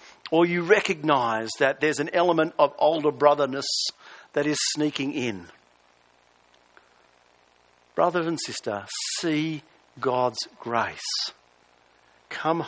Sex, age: male, 50-69